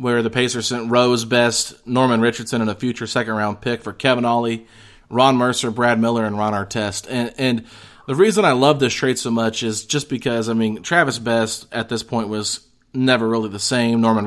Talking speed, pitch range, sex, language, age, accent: 210 wpm, 110-130 Hz, male, English, 30-49, American